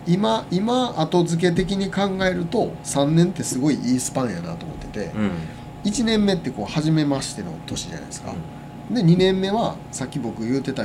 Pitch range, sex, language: 135-185 Hz, male, Japanese